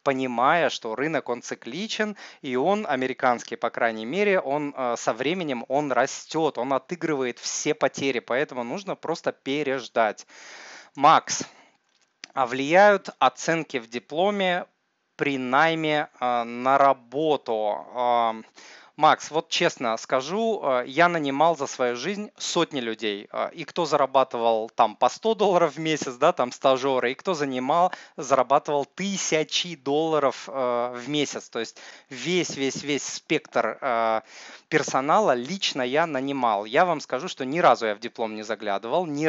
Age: 30-49